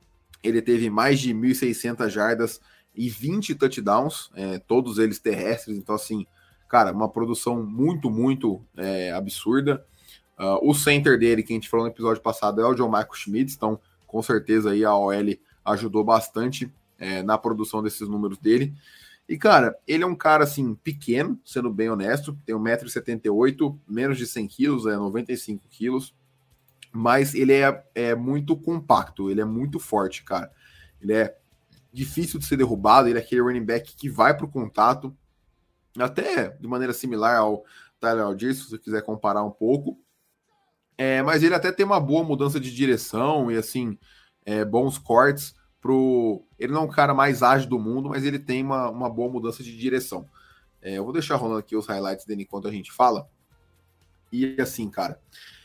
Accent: Brazilian